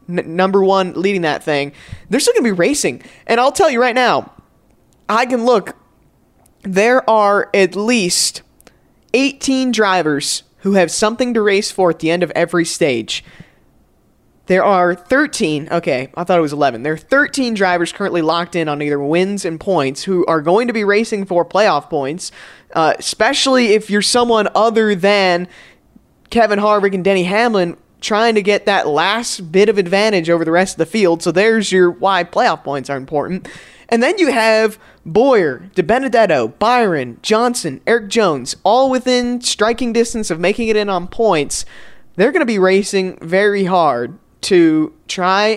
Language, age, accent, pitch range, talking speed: English, 20-39, American, 175-230 Hz, 175 wpm